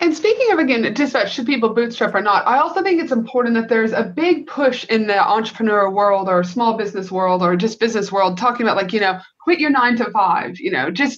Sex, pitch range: female, 210-270 Hz